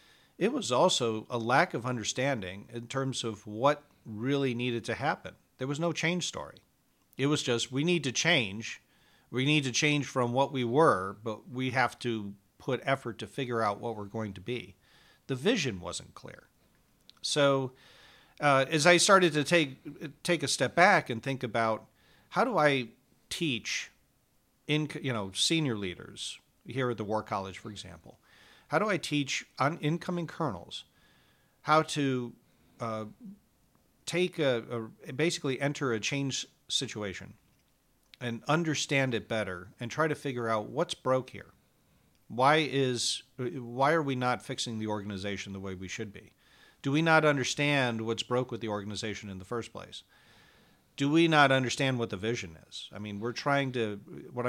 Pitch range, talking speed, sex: 110-145 Hz, 170 wpm, male